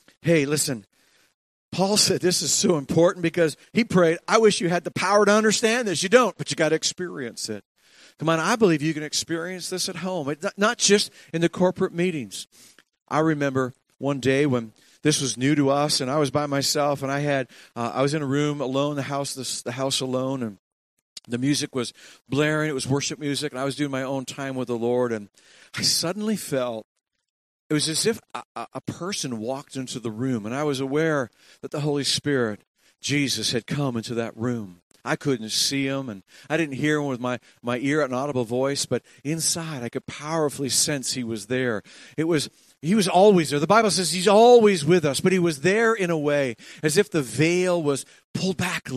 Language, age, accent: English, 50-69, American